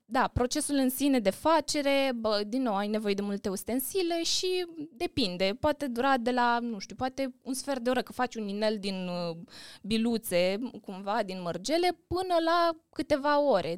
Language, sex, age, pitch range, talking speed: Romanian, female, 20-39, 215-270 Hz, 170 wpm